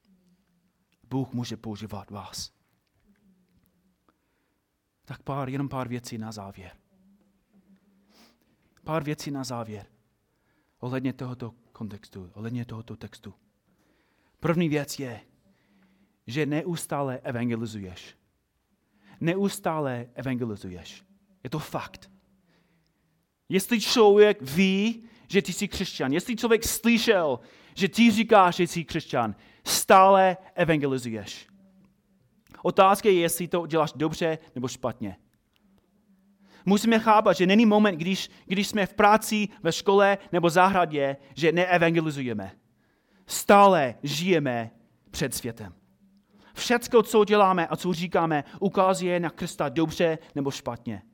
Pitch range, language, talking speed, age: 130-195 Hz, Czech, 105 wpm, 30-49